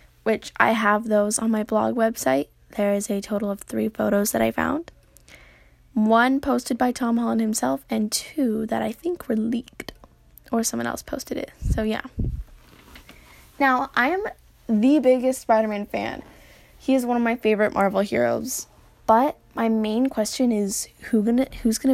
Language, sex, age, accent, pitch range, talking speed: English, female, 10-29, American, 210-245 Hz, 165 wpm